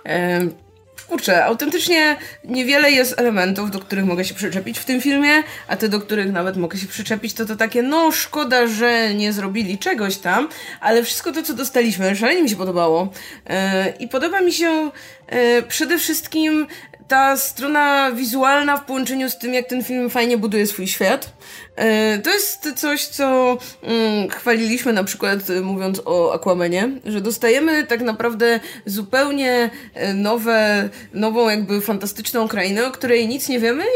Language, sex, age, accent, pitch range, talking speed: Polish, female, 20-39, native, 195-255 Hz, 150 wpm